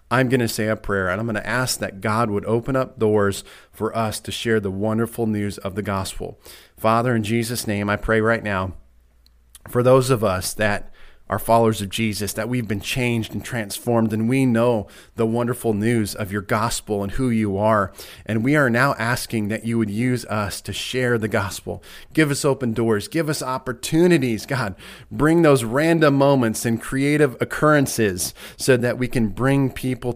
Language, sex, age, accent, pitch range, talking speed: English, male, 40-59, American, 110-140 Hz, 195 wpm